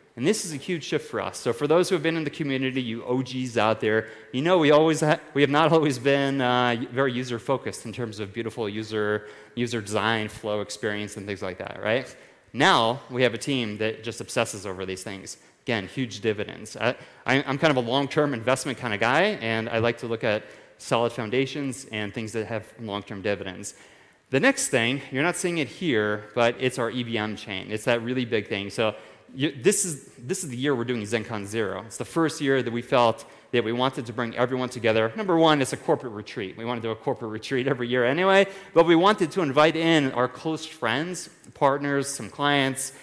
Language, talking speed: English, 225 wpm